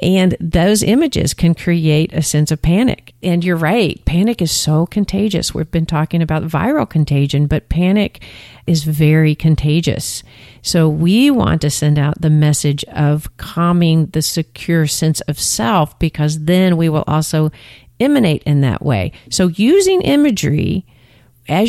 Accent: American